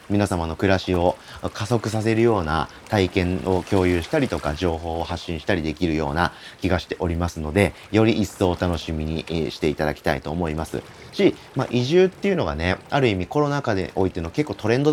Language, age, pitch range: Japanese, 30-49, 85-130 Hz